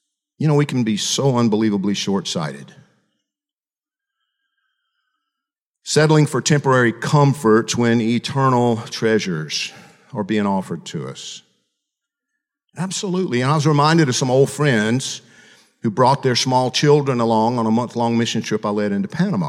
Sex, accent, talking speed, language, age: male, American, 135 wpm, English, 50-69